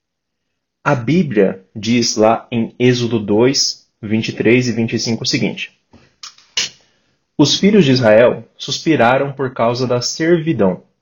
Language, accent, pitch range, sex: Portuguese, Brazilian, 110-145 Hz, male